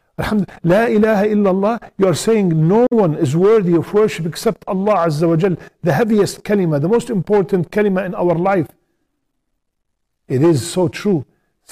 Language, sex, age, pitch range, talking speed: English, male, 50-69, 130-180 Hz, 165 wpm